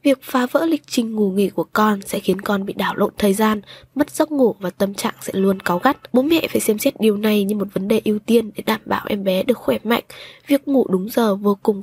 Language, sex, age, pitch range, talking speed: Vietnamese, female, 10-29, 200-250 Hz, 275 wpm